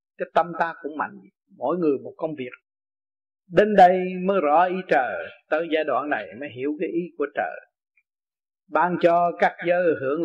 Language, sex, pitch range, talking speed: Vietnamese, male, 155-210 Hz, 180 wpm